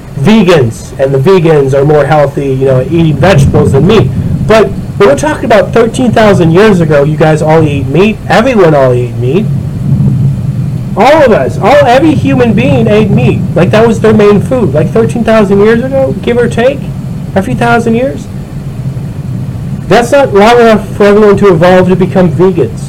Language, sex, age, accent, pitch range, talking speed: English, male, 30-49, American, 145-215 Hz, 175 wpm